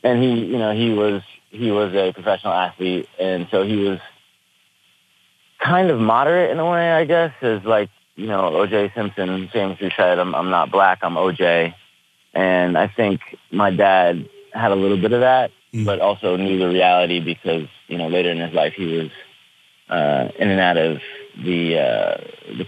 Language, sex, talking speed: English, male, 185 wpm